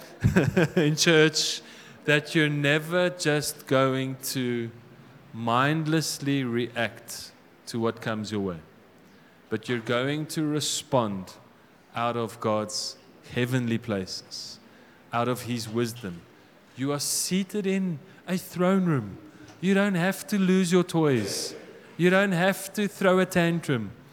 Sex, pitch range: male, 120-170 Hz